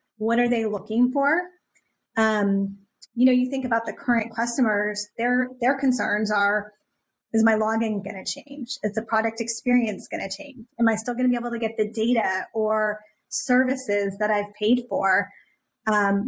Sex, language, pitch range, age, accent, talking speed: female, English, 205-240 Hz, 20-39, American, 180 wpm